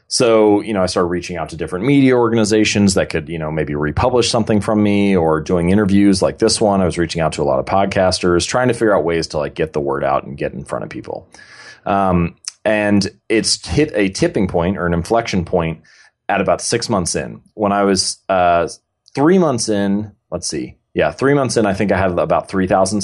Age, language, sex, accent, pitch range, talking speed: 30-49, English, male, American, 85-105 Hz, 225 wpm